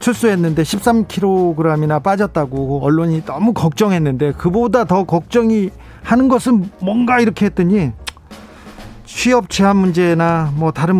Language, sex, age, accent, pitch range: Korean, male, 40-59, native, 155-215 Hz